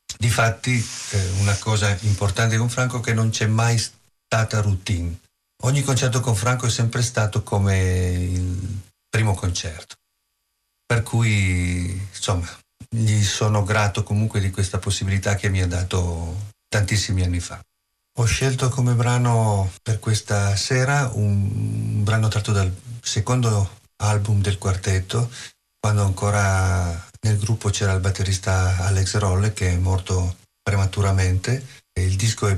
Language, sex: Italian, male